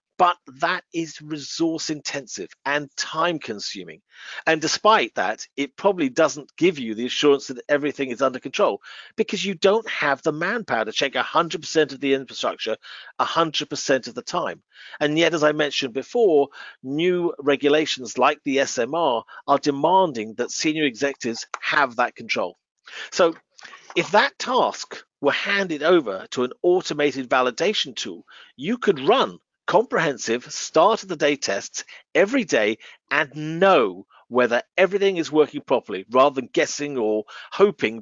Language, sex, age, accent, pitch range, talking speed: English, male, 40-59, British, 130-180 Hz, 145 wpm